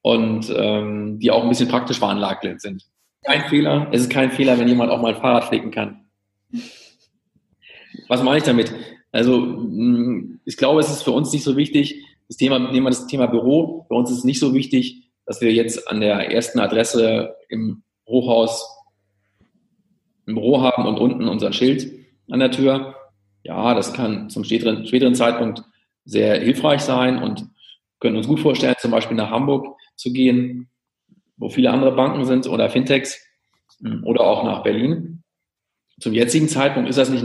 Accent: German